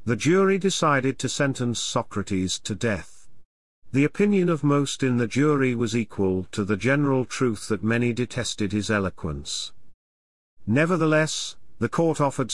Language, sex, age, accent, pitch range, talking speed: English, male, 40-59, British, 105-145 Hz, 145 wpm